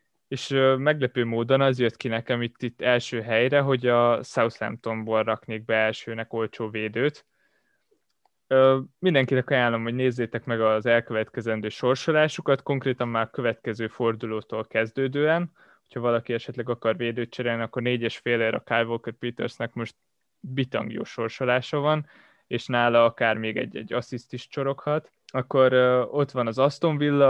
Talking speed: 140 wpm